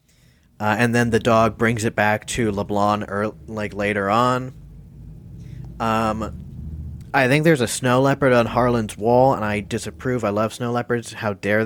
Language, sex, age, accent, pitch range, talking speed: English, male, 30-49, American, 110-130 Hz, 165 wpm